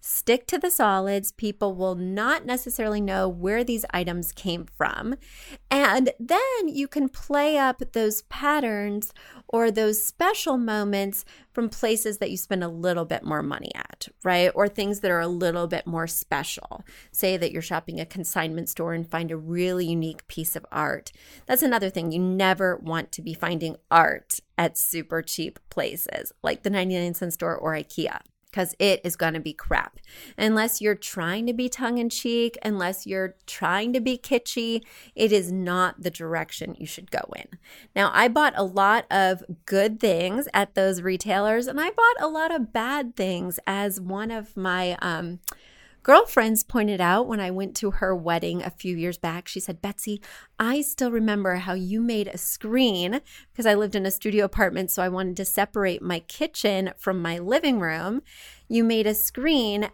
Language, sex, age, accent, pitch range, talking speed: English, female, 30-49, American, 180-235 Hz, 180 wpm